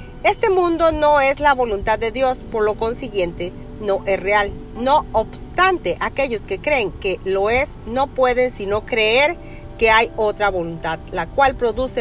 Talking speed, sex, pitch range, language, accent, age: 165 wpm, female, 200-275 Hz, Spanish, American, 40-59